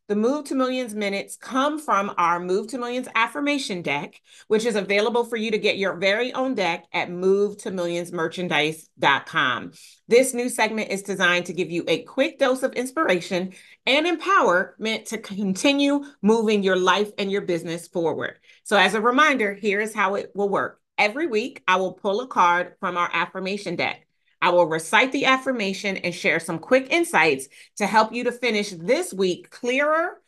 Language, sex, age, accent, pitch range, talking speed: English, female, 40-59, American, 175-240 Hz, 175 wpm